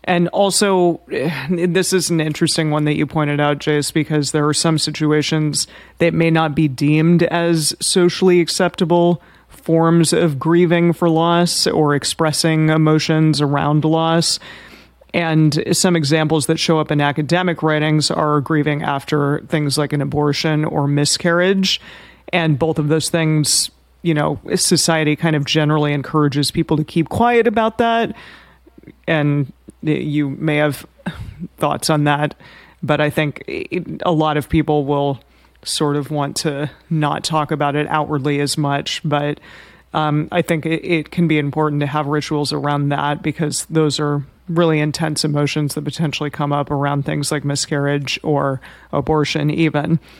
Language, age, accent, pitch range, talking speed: English, 30-49, American, 145-165 Hz, 155 wpm